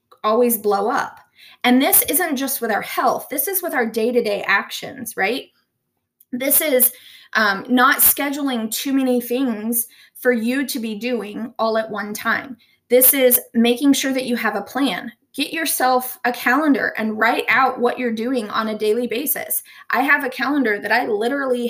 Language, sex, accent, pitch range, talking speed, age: English, female, American, 225-270 Hz, 175 wpm, 20-39